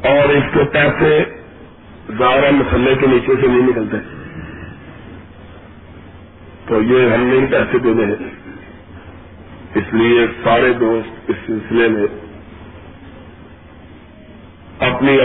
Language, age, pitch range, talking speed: Urdu, 50-69, 85-140 Hz, 105 wpm